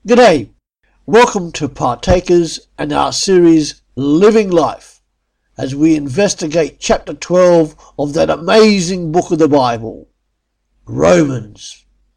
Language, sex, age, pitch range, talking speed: English, male, 50-69, 140-185 Hz, 110 wpm